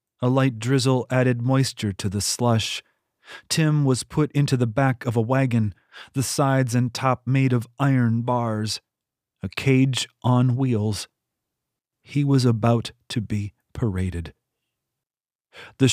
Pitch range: 110-135 Hz